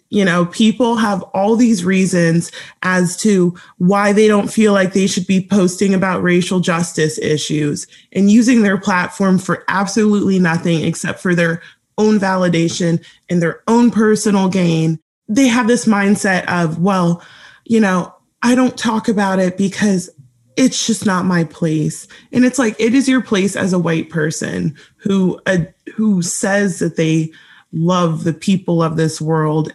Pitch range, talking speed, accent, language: 170-220 Hz, 165 wpm, American, English